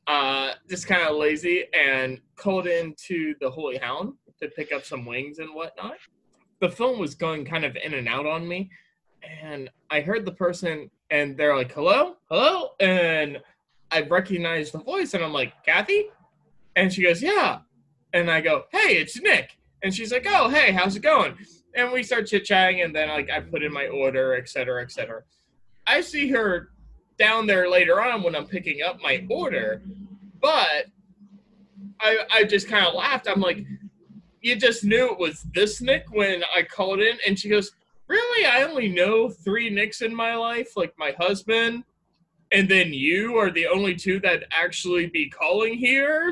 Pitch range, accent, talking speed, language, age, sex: 155-220 Hz, American, 180 wpm, English, 20-39, male